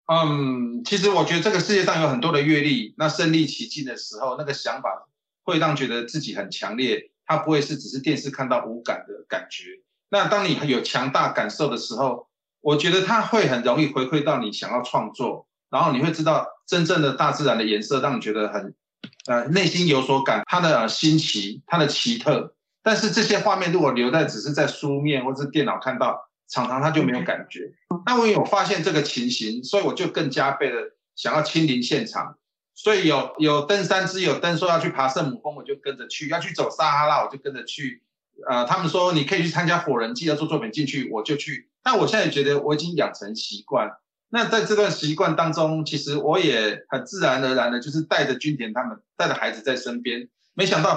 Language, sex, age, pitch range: Chinese, male, 30-49, 135-190 Hz